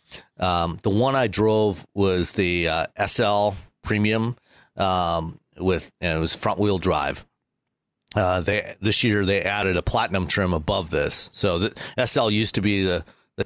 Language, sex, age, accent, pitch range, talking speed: English, male, 40-59, American, 90-105 Hz, 165 wpm